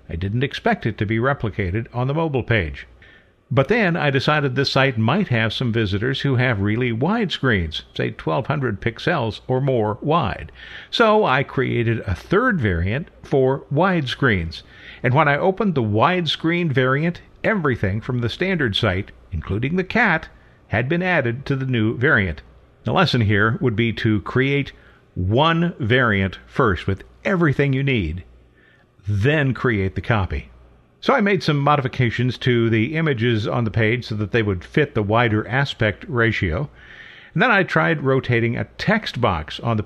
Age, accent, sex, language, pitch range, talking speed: 50-69, American, male, English, 105-145 Hz, 165 wpm